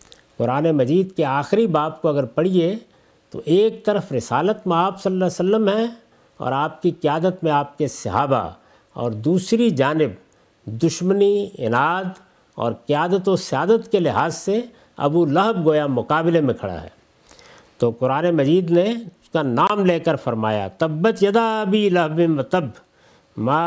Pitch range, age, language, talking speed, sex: 145-200 Hz, 50-69, Urdu, 155 wpm, male